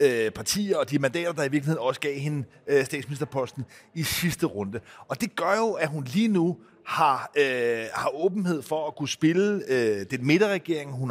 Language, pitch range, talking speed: Danish, 145-195 Hz, 185 wpm